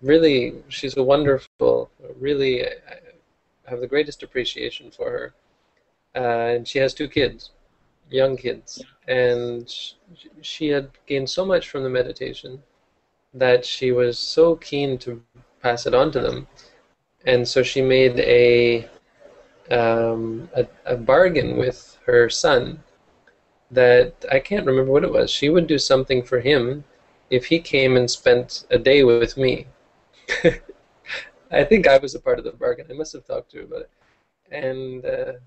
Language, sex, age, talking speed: English, male, 20-39, 155 wpm